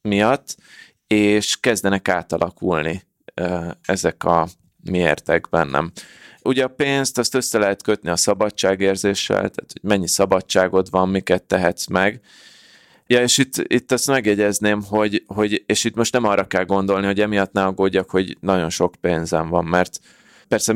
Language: Hungarian